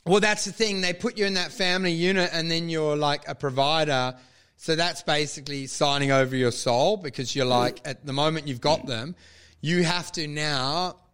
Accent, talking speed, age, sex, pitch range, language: Australian, 200 wpm, 30-49, male, 140-175 Hz, English